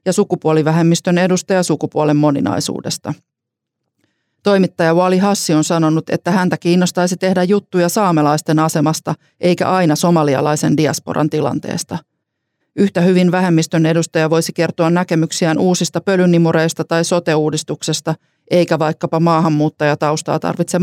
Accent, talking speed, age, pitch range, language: native, 105 wpm, 40-59, 155-175 Hz, Finnish